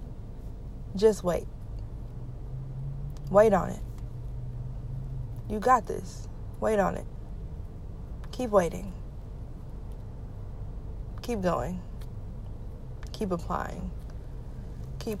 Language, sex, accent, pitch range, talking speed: English, female, American, 110-190 Hz, 70 wpm